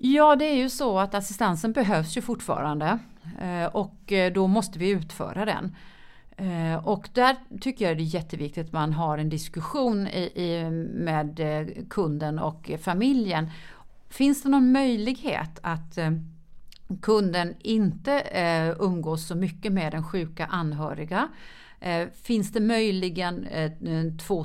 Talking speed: 125 wpm